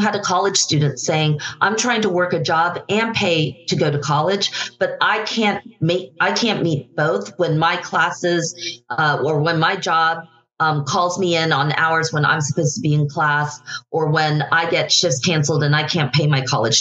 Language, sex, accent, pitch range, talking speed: English, female, American, 150-185 Hz, 205 wpm